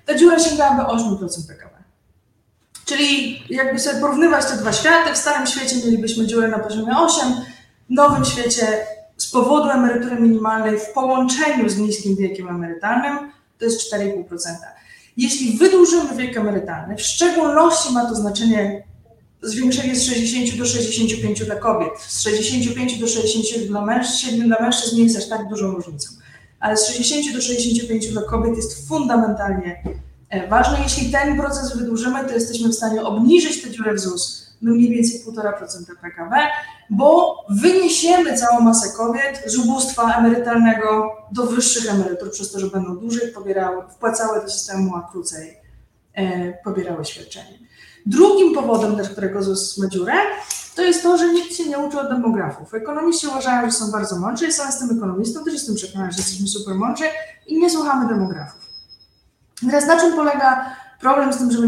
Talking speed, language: 160 wpm, Polish